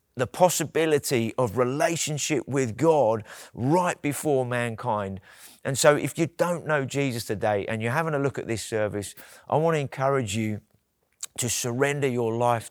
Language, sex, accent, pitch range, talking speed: English, male, British, 110-140 Hz, 160 wpm